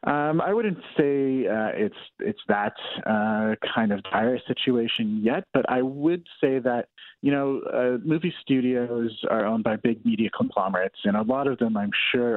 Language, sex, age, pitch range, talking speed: English, male, 30-49, 110-145 Hz, 180 wpm